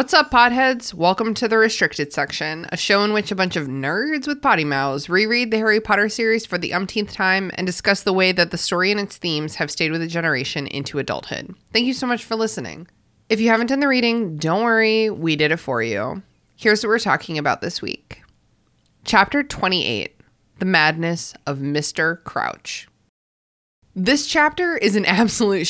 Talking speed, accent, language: 195 wpm, American, English